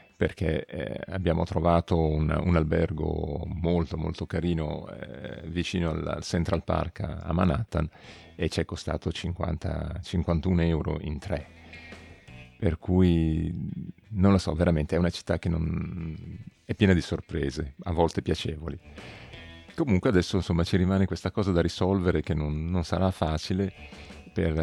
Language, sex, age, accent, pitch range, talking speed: Italian, male, 40-59, native, 80-95 Hz, 140 wpm